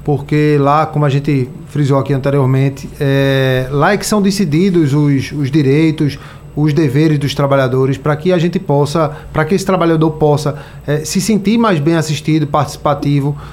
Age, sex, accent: 20-39, male, Brazilian